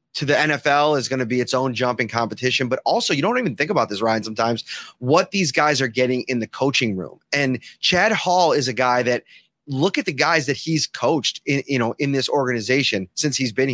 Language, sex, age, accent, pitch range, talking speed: English, male, 30-49, American, 130-155 Hz, 225 wpm